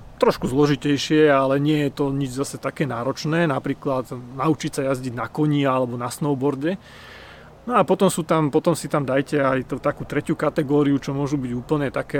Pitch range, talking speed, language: 135-155 Hz, 185 wpm, Slovak